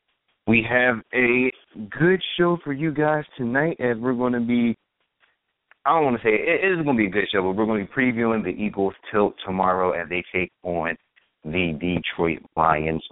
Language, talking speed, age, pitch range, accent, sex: English, 205 wpm, 30-49, 85-110 Hz, American, male